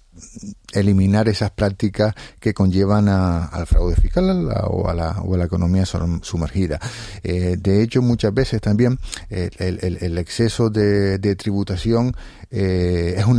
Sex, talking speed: male, 160 wpm